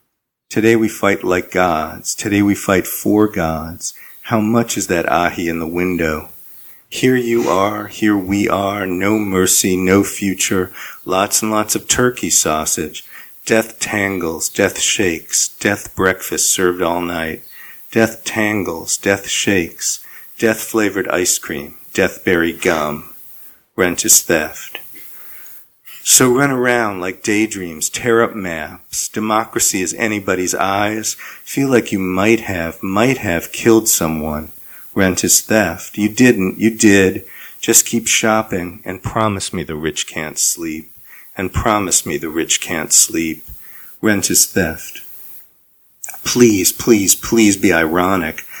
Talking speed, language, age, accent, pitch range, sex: 135 wpm, English, 50-69, American, 90-110 Hz, male